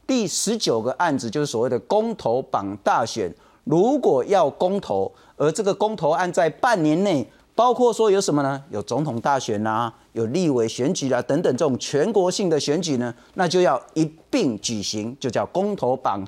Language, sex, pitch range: Chinese, male, 145-210 Hz